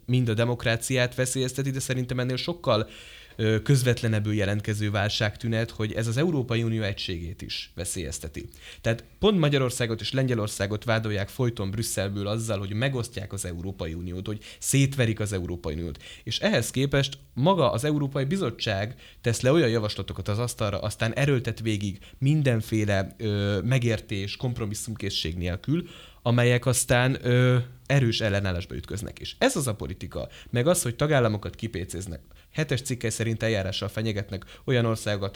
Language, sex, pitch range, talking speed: Hungarian, male, 100-125 Hz, 140 wpm